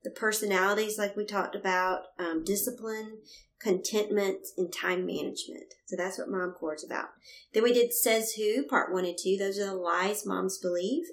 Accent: American